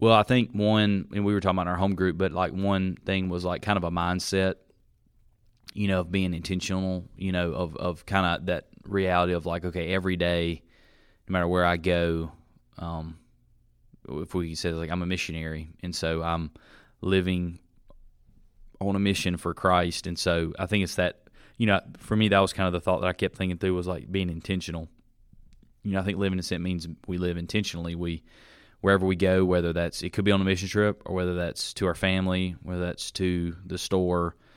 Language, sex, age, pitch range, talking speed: English, male, 20-39, 85-95 Hz, 210 wpm